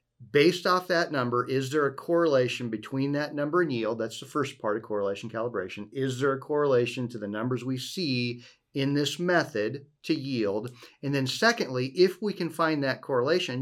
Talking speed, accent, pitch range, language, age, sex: 190 wpm, American, 120-150 Hz, English, 40-59, male